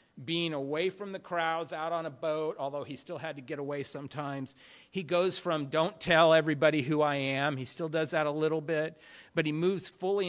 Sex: male